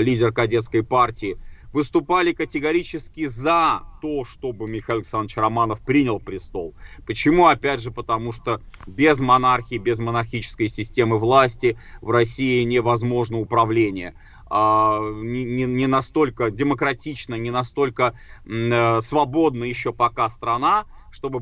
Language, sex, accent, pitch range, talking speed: Russian, male, native, 115-140 Hz, 105 wpm